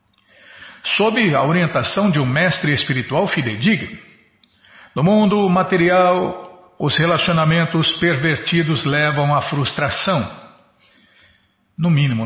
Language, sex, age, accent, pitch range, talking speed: Portuguese, male, 60-79, Brazilian, 140-180 Hz, 95 wpm